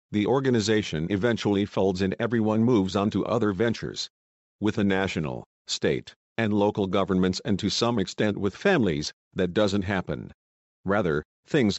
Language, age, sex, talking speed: English, 50-69, male, 150 wpm